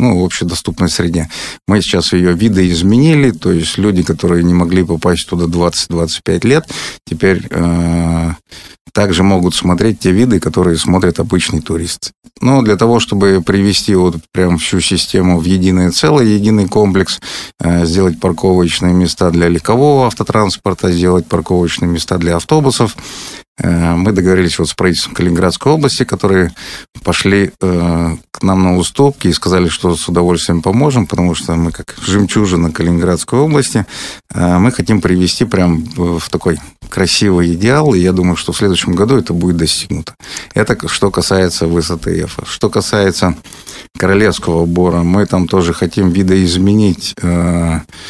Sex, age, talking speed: male, 30-49, 145 wpm